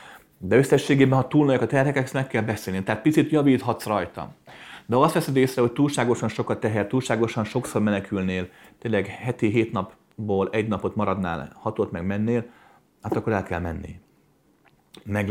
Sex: male